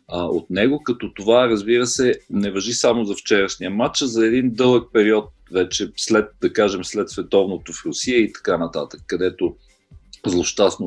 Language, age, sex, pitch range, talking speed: Bulgarian, 40-59, male, 100-125 Hz, 160 wpm